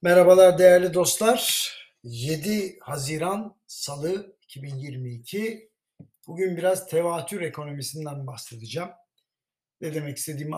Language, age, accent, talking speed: Turkish, 60-79, native, 85 wpm